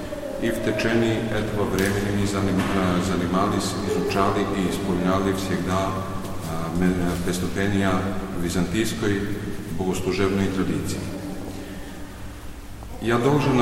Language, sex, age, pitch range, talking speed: Polish, male, 40-59, 90-100 Hz, 80 wpm